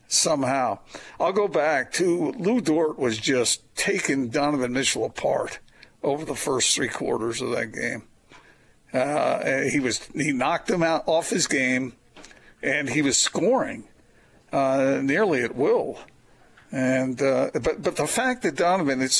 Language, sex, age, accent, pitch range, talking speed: English, male, 50-69, American, 130-185 Hz, 150 wpm